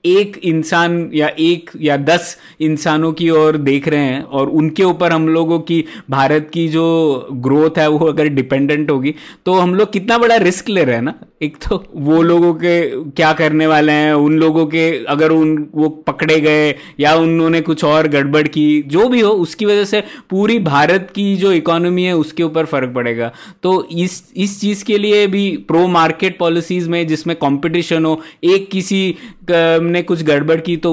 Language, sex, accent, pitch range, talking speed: Hindi, male, native, 150-180 Hz, 190 wpm